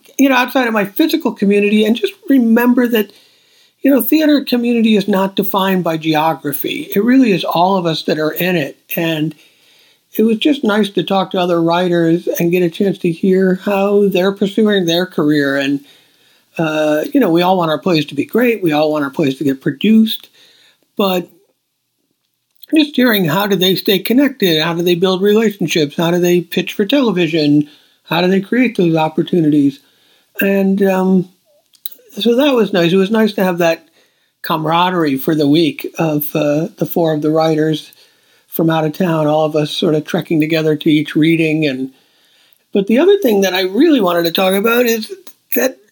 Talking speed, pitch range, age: 190 wpm, 165-225 Hz, 50-69